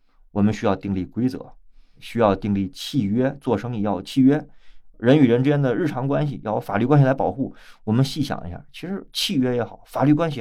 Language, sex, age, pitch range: Chinese, male, 30-49, 95-150 Hz